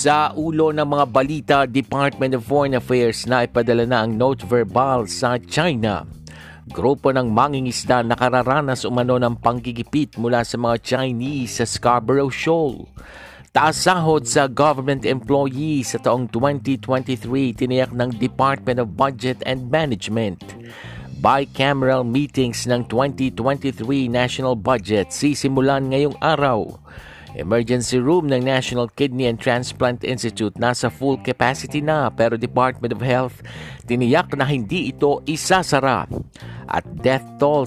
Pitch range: 120-140 Hz